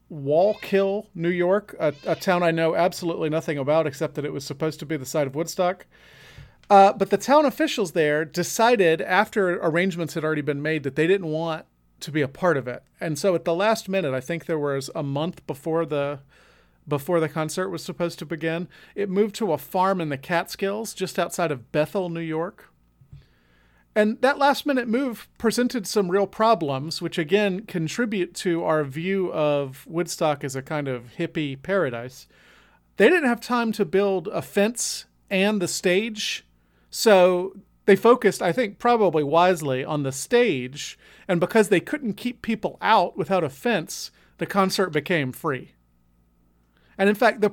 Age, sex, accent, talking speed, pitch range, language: 40-59, male, American, 180 wpm, 145-195 Hz, English